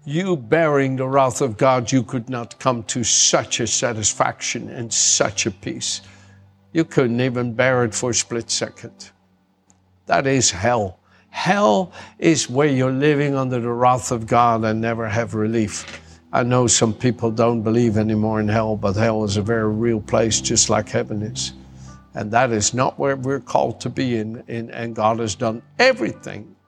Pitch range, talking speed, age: 110-135 Hz, 180 wpm, 60-79